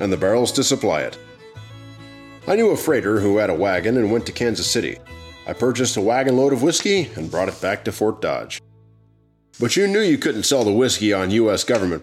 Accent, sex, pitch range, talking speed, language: American, male, 105-140 Hz, 220 wpm, English